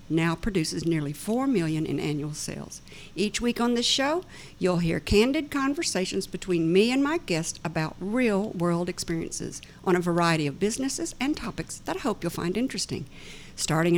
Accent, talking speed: American, 170 wpm